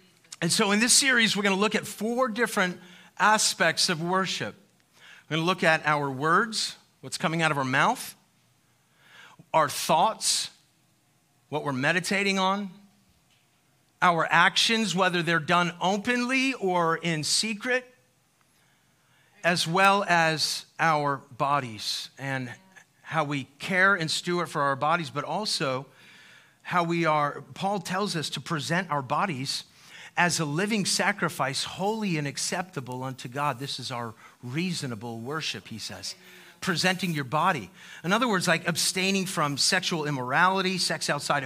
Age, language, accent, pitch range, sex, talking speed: 40-59, English, American, 145-190 Hz, male, 140 wpm